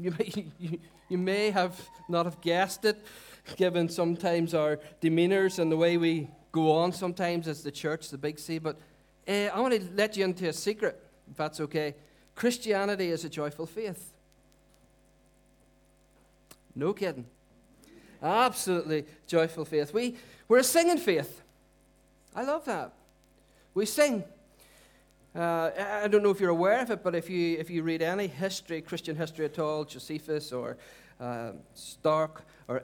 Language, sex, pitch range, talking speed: English, male, 155-200 Hz, 150 wpm